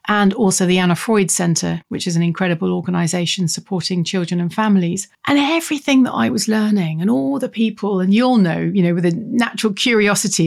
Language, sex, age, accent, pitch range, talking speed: English, female, 40-59, British, 185-230 Hz, 195 wpm